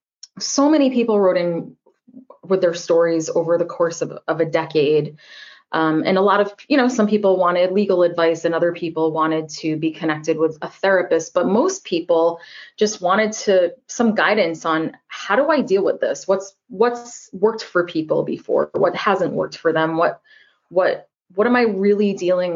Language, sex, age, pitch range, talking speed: English, female, 20-39, 170-215 Hz, 185 wpm